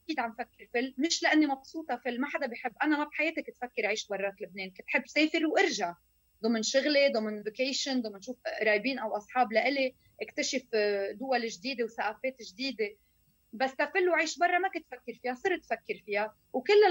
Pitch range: 235-310 Hz